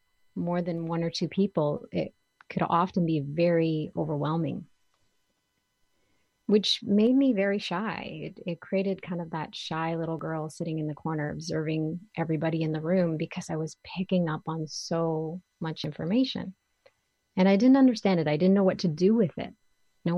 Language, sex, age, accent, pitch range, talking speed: English, female, 30-49, American, 160-185 Hz, 170 wpm